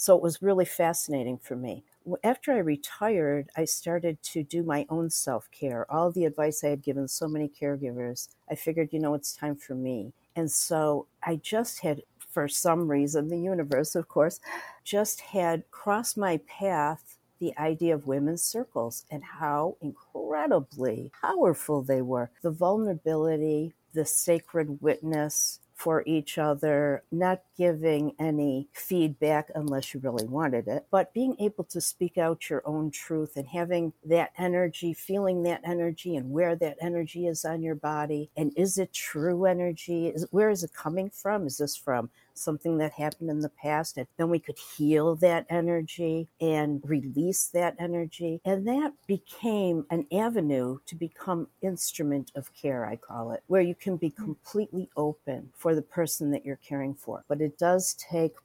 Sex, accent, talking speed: female, American, 165 wpm